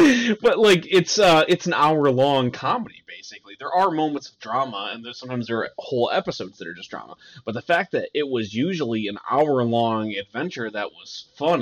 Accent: American